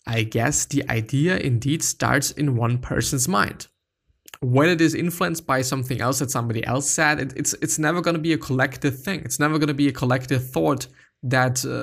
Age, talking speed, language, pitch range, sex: 20-39, 195 wpm, English, 125-150 Hz, male